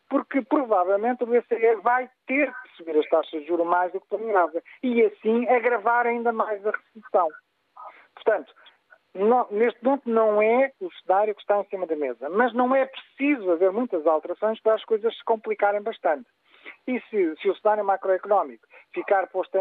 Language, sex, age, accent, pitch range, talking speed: Portuguese, male, 50-69, Portuguese, 180-235 Hz, 175 wpm